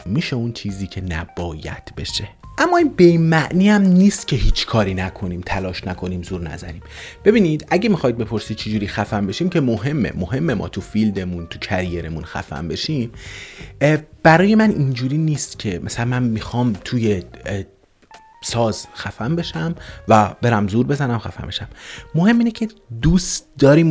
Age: 30-49